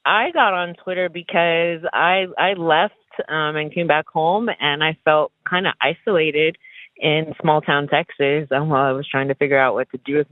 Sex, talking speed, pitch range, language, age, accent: female, 200 wpm, 140-170 Hz, English, 30-49, American